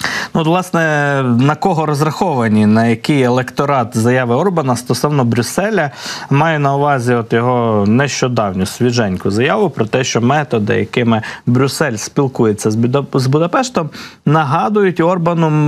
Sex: male